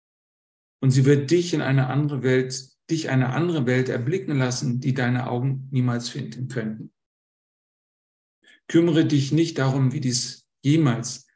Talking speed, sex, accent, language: 145 wpm, male, German, German